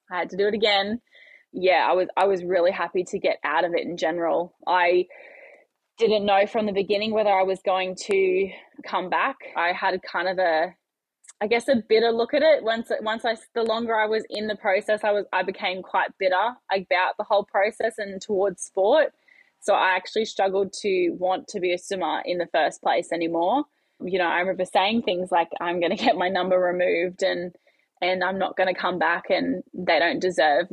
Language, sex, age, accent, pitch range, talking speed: English, female, 10-29, Australian, 180-215 Hz, 215 wpm